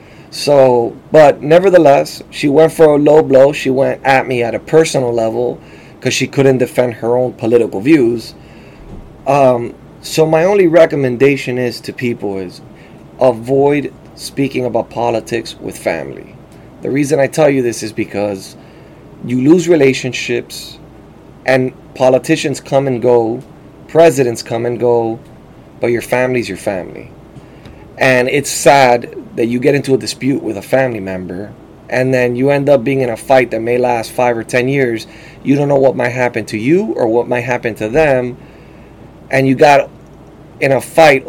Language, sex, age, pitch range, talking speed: English, male, 30-49, 120-140 Hz, 165 wpm